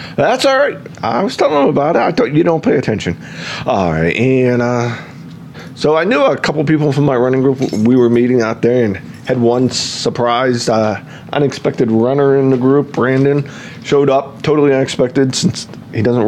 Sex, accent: male, American